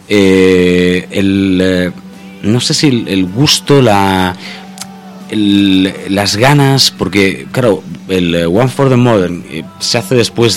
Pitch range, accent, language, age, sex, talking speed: 95-130 Hz, Spanish, Spanish, 30-49, male, 130 wpm